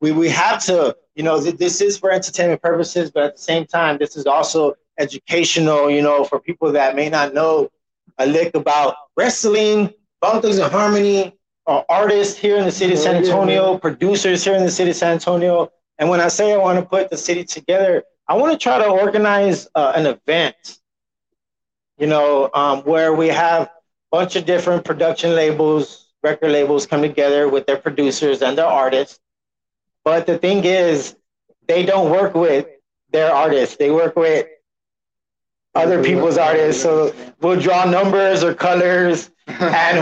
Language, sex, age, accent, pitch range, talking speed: English, male, 20-39, American, 155-190 Hz, 175 wpm